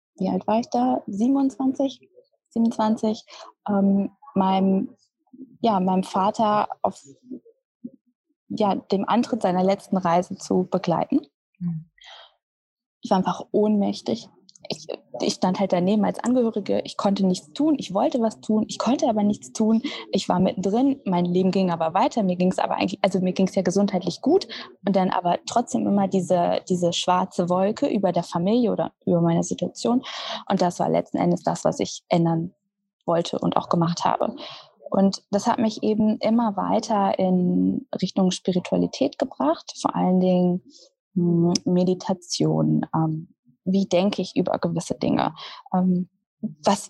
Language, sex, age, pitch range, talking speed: German, female, 20-39, 185-235 Hz, 145 wpm